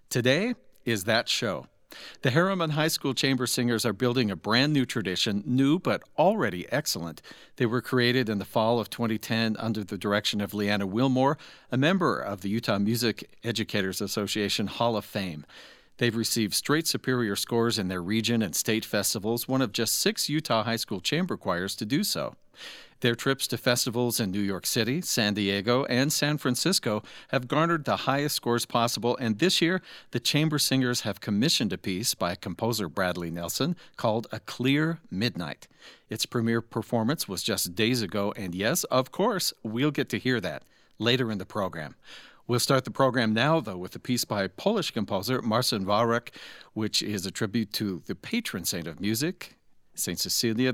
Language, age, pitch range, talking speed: English, 50-69, 105-130 Hz, 180 wpm